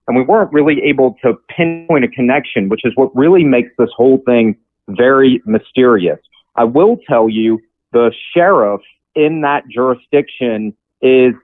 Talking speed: 150 wpm